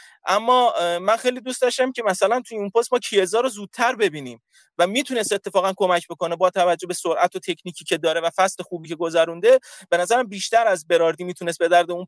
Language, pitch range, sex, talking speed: Persian, 185-250 Hz, male, 205 wpm